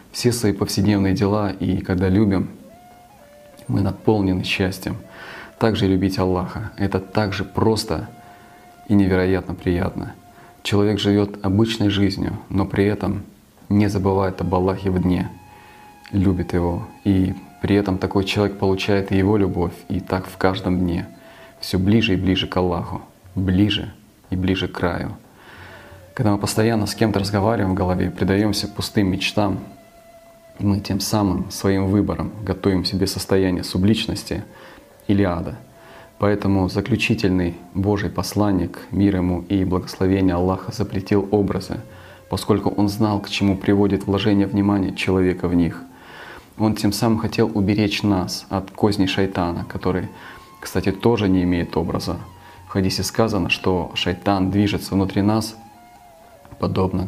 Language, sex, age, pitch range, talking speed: Russian, male, 20-39, 95-105 Hz, 135 wpm